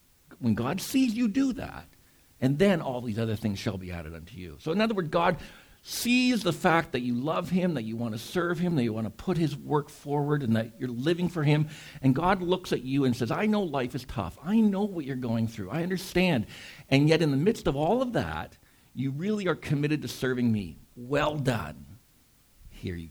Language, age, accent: English, 50-69, American